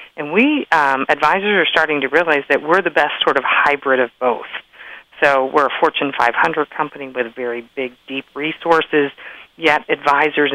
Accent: American